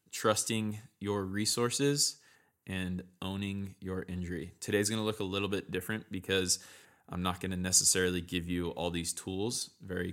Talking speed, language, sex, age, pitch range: 160 wpm, English, male, 20-39, 85-105 Hz